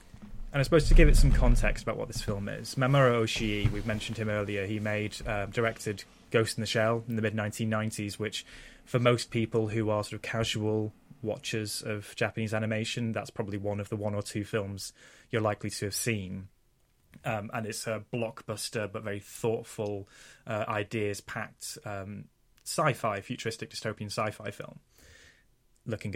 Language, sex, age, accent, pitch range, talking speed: English, male, 10-29, British, 105-115 Hz, 165 wpm